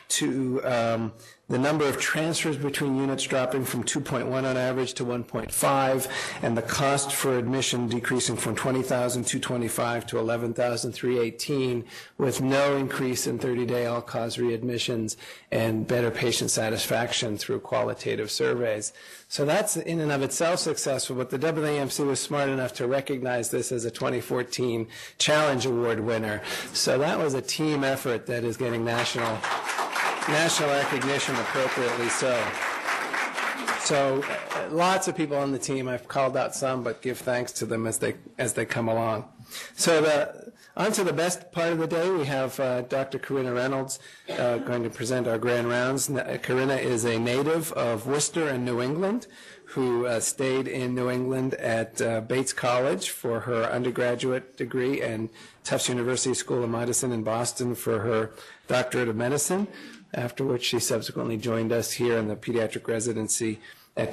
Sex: male